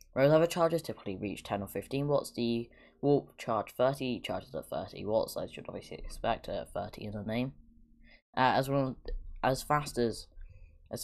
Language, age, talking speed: English, 10-29, 185 wpm